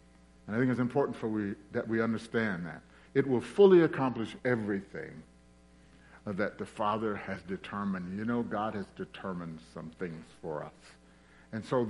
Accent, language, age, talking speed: American, English, 50-69, 160 wpm